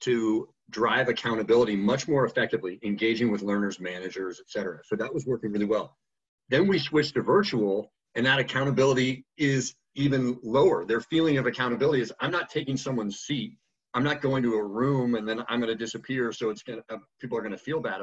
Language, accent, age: English, American, 40-59